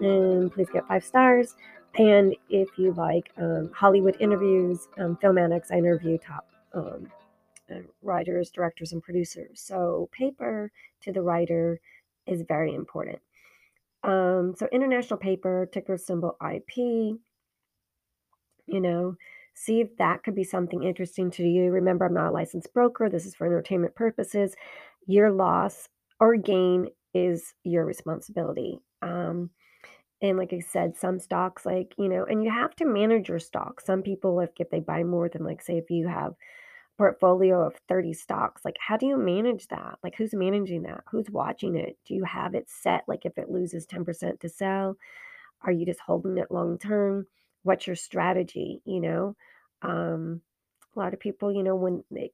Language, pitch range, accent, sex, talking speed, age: English, 175-200 Hz, American, female, 170 wpm, 30-49